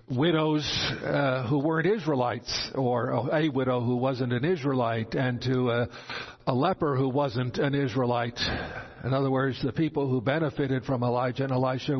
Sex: male